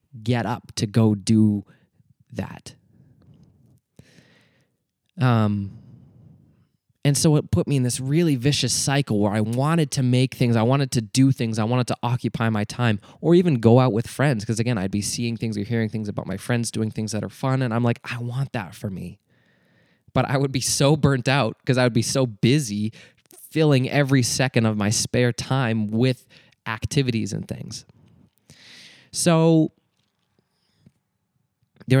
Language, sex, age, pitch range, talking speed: English, male, 20-39, 110-130 Hz, 170 wpm